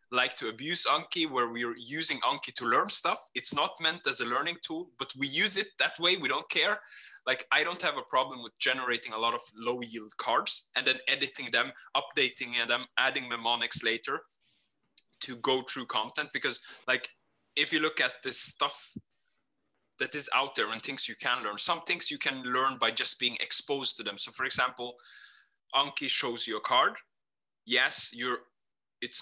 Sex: male